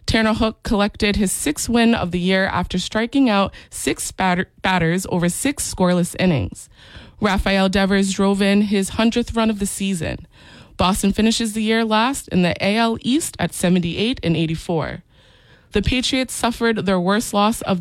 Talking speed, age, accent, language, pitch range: 165 wpm, 20-39, American, English, 180-220 Hz